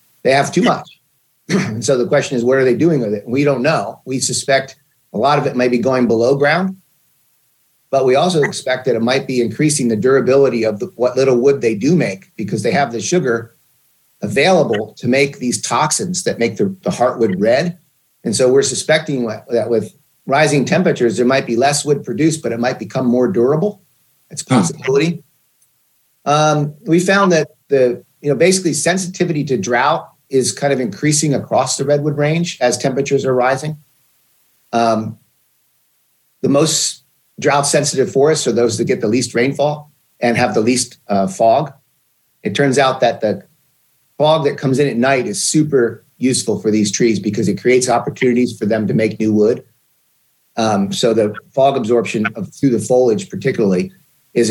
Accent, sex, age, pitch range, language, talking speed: American, male, 40-59, 125-150 Hz, English, 185 wpm